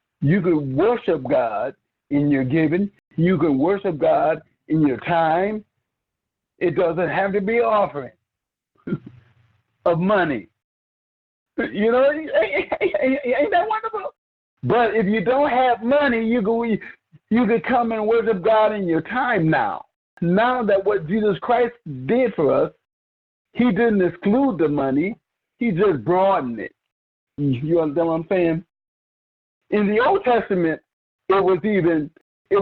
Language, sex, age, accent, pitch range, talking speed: English, male, 60-79, American, 170-235 Hz, 140 wpm